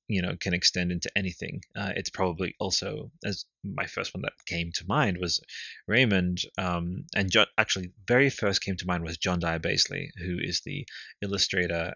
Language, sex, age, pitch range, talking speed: English, male, 20-39, 90-100 Hz, 180 wpm